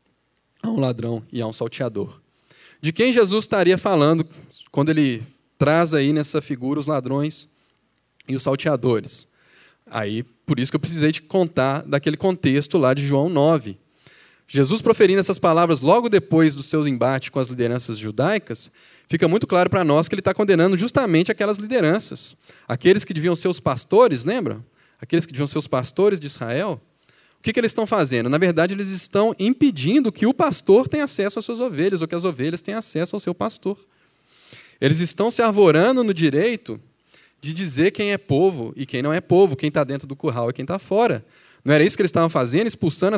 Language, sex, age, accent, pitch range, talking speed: Portuguese, male, 10-29, Brazilian, 135-190 Hz, 190 wpm